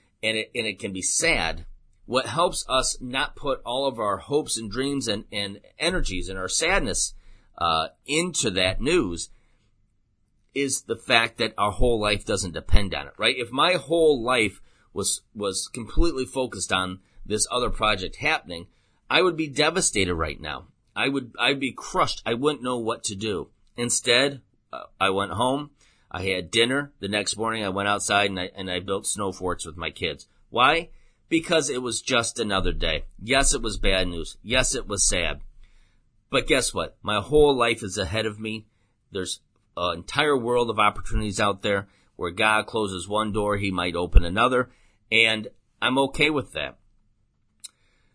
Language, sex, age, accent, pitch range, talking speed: English, male, 30-49, American, 100-125 Hz, 175 wpm